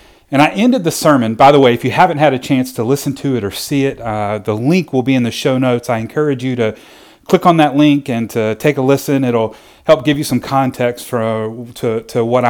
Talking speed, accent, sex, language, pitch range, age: 260 wpm, American, male, English, 110-135 Hz, 40-59